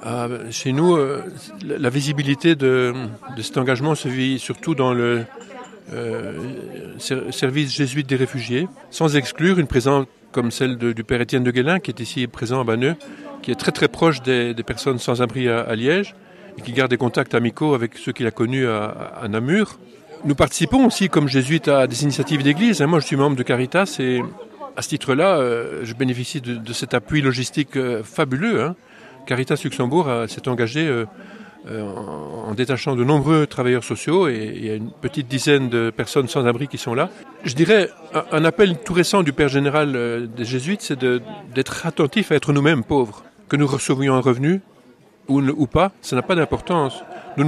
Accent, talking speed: French, 200 wpm